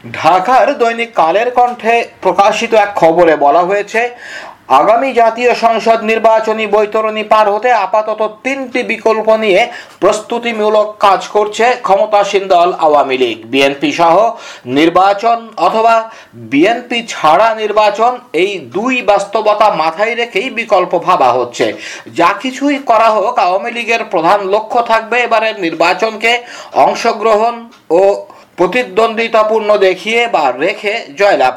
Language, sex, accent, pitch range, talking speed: Bengali, male, native, 200-235 Hz, 105 wpm